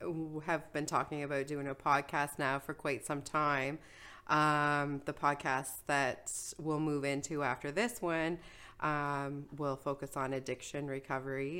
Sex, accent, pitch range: female, American, 135-160 Hz